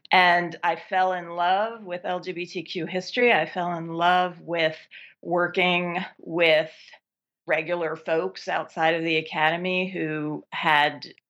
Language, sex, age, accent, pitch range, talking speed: English, female, 40-59, American, 160-185 Hz, 120 wpm